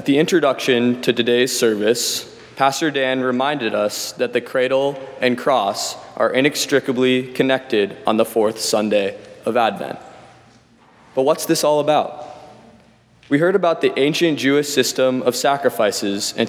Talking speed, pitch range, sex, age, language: 140 wpm, 115-140 Hz, male, 20-39, English